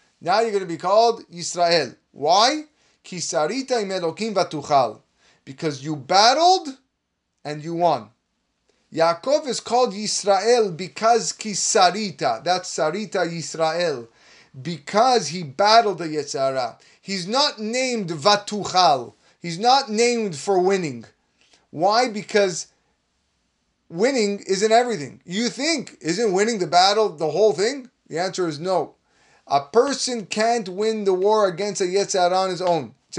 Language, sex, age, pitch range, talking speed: English, male, 30-49, 175-230 Hz, 125 wpm